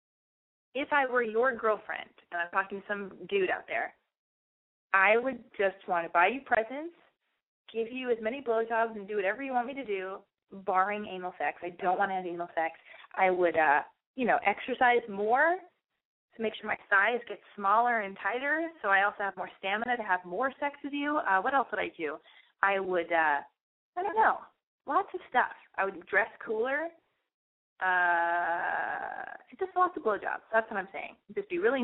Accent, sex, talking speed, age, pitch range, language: American, female, 200 wpm, 20-39, 190-275 Hz, English